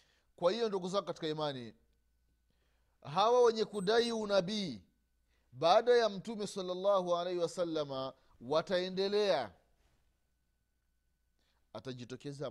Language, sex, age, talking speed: Swahili, male, 30-49, 85 wpm